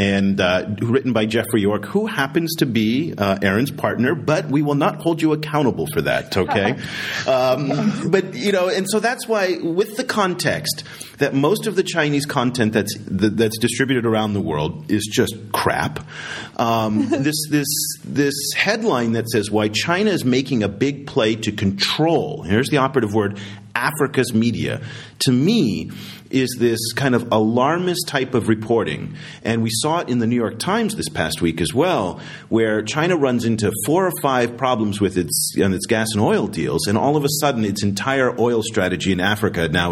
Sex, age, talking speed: male, 40-59, 190 wpm